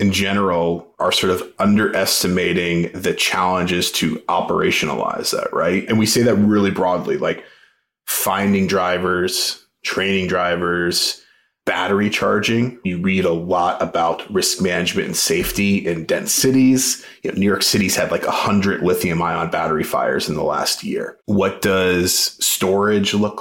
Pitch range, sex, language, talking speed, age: 90-115 Hz, male, English, 145 wpm, 30-49